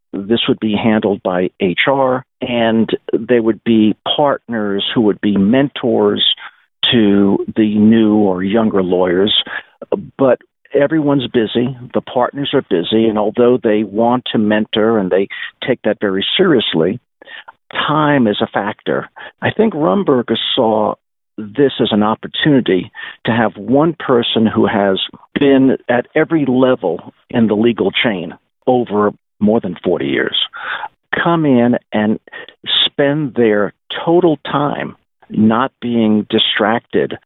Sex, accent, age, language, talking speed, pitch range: male, American, 50-69, English, 130 wpm, 105-130 Hz